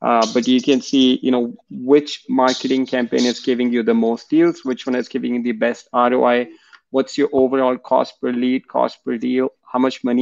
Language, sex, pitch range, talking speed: English, male, 120-130 Hz, 210 wpm